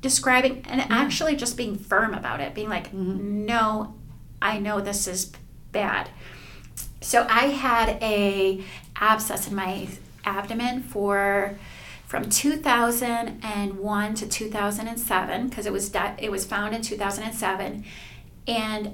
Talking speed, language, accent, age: 120 wpm, English, American, 30-49